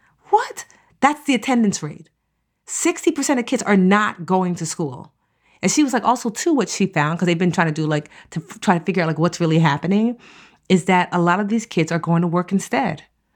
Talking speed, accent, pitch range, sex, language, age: 230 wpm, American, 160-210 Hz, female, English, 30-49